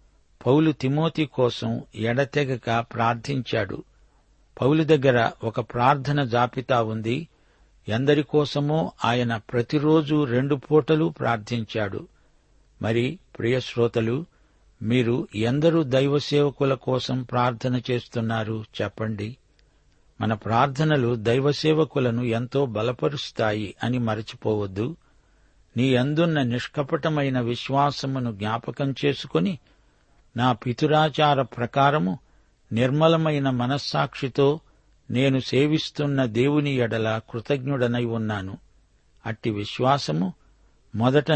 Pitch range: 115-145 Hz